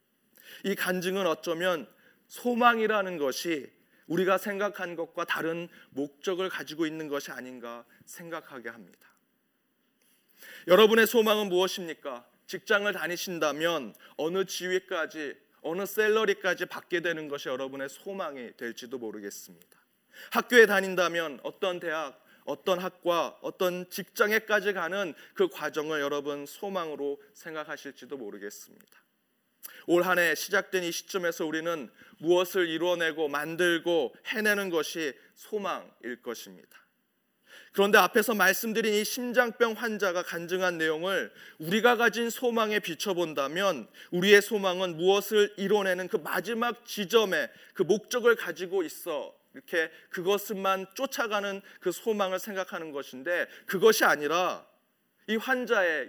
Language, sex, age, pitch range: Korean, male, 30-49, 165-215 Hz